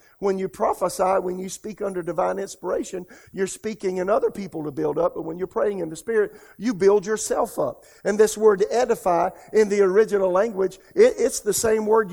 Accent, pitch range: American, 180-210 Hz